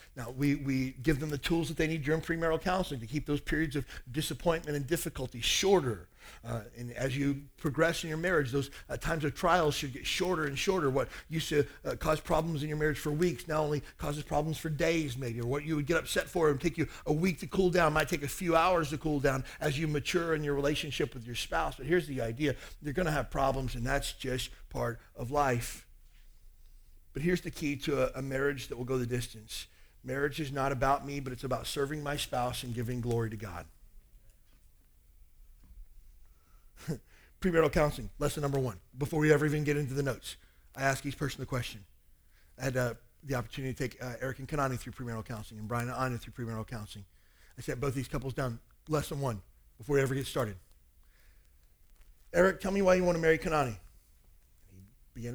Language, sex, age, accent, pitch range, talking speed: English, male, 50-69, American, 115-155 Hz, 215 wpm